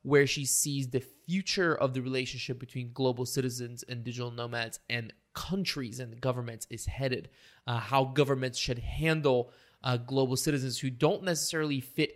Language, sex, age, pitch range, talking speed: English, male, 20-39, 125-155 Hz, 160 wpm